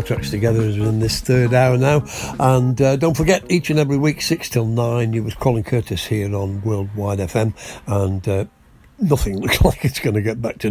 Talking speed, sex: 205 wpm, male